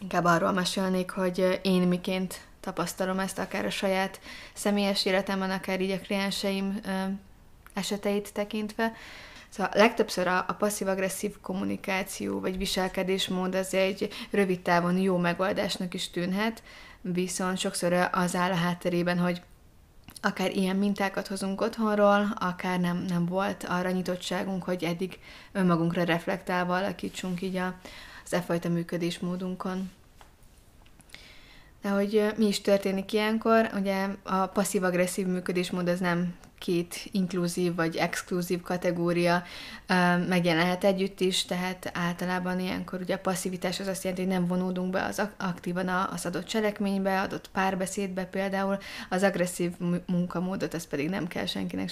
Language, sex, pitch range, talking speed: Hungarian, female, 180-195 Hz, 130 wpm